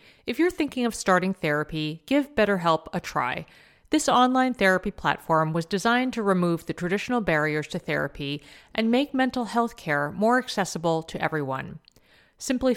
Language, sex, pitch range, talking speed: English, female, 165-235 Hz, 155 wpm